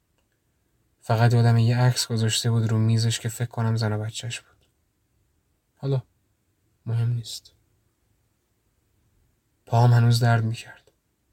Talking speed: 115 wpm